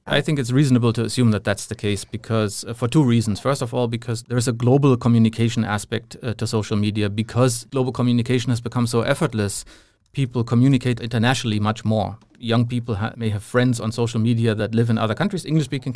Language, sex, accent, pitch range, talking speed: English, male, German, 110-130 Hz, 210 wpm